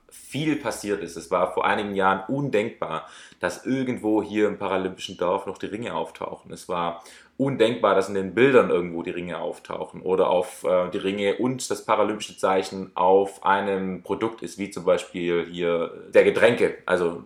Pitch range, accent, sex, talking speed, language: 90-110 Hz, German, male, 175 wpm, German